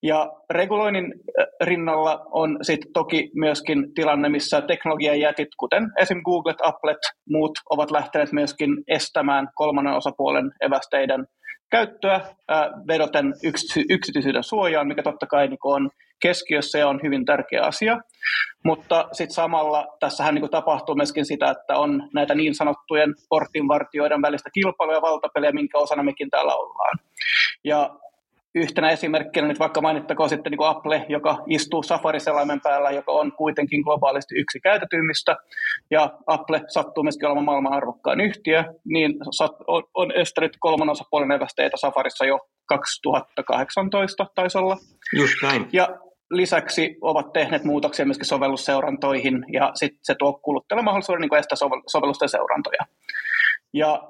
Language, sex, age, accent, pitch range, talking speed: Finnish, male, 30-49, native, 150-175 Hz, 125 wpm